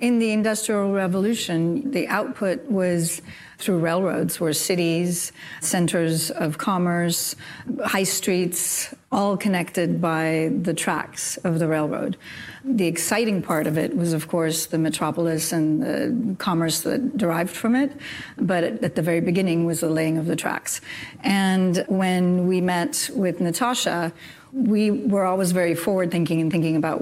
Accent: American